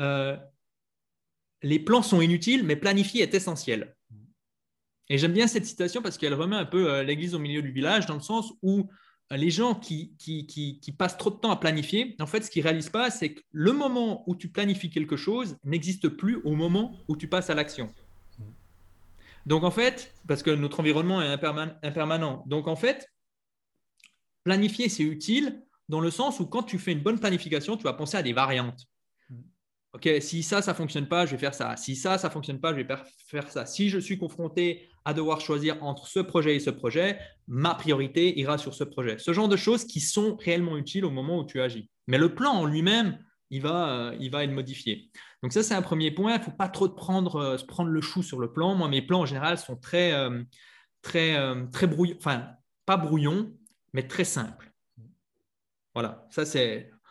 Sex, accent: male, French